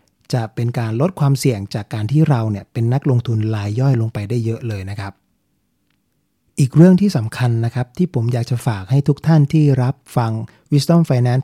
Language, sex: Thai, male